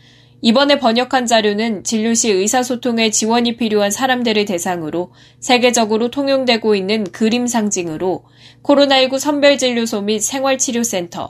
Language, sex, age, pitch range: Korean, female, 10-29, 185-245 Hz